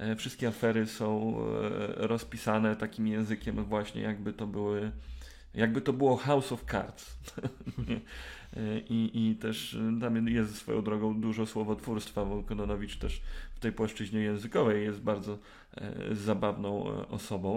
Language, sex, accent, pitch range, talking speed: Polish, male, native, 105-115 Hz, 125 wpm